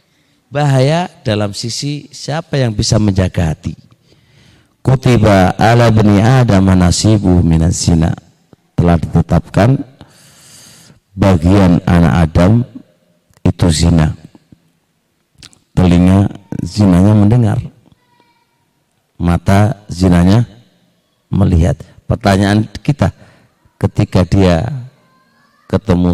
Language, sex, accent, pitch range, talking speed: Indonesian, male, native, 90-135 Hz, 75 wpm